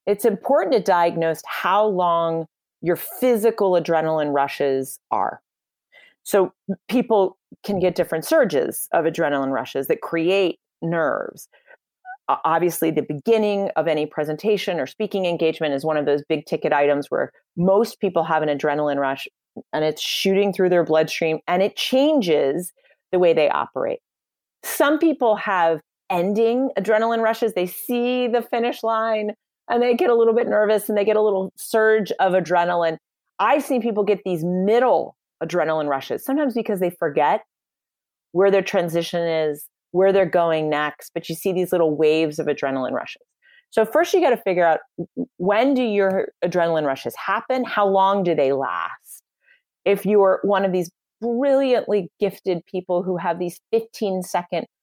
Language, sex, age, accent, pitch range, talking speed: English, female, 30-49, American, 160-220 Hz, 160 wpm